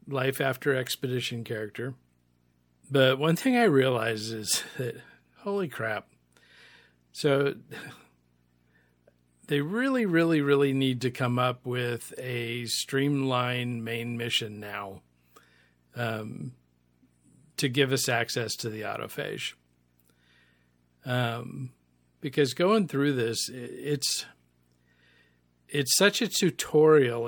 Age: 50-69